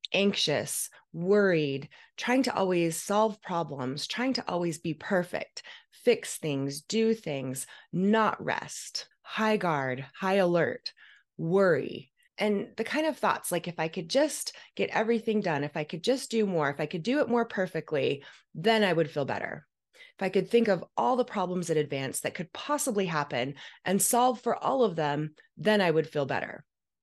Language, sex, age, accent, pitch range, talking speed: English, female, 30-49, American, 160-225 Hz, 175 wpm